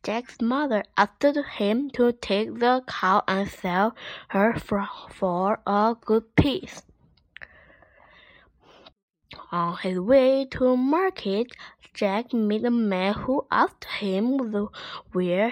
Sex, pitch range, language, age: female, 195-270 Hz, Chinese, 10-29